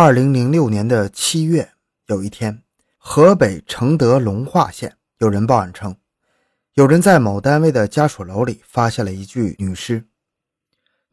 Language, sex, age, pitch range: Chinese, male, 20-39, 110-150 Hz